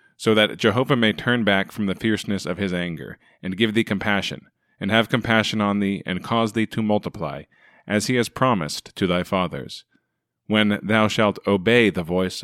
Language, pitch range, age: English, 95-115 Hz, 30-49